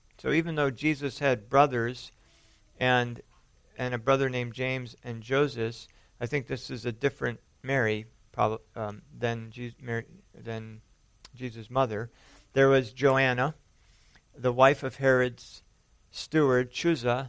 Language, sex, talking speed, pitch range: English, male, 120 wpm, 115-145 Hz